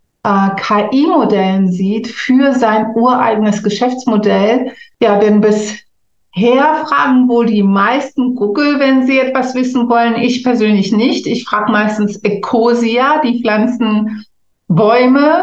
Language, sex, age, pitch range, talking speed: German, female, 60-79, 205-245 Hz, 115 wpm